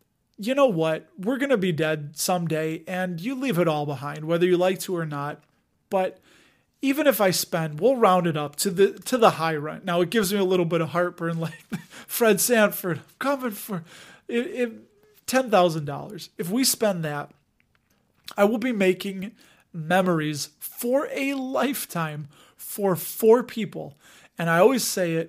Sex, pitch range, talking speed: male, 165-210 Hz, 170 wpm